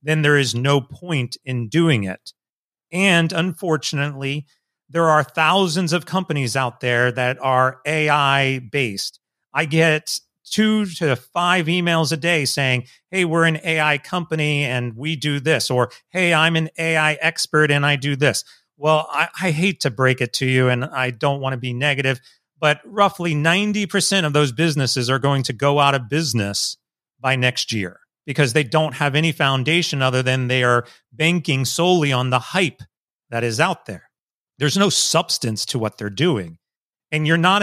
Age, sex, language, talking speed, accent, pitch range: 40-59, male, English, 175 wpm, American, 130-165 Hz